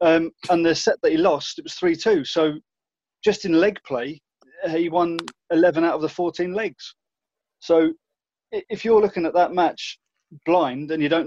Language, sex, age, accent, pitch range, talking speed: English, male, 20-39, British, 145-175 Hz, 180 wpm